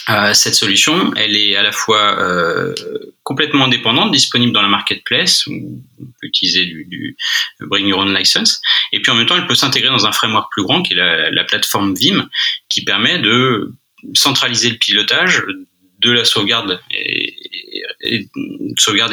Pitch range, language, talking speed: 95-140 Hz, French, 165 wpm